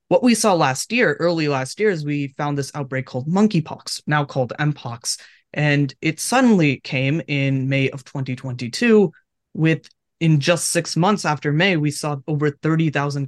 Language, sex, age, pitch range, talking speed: English, male, 20-39, 135-170 Hz, 165 wpm